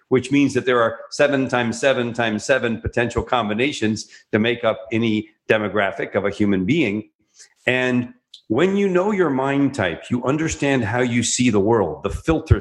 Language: English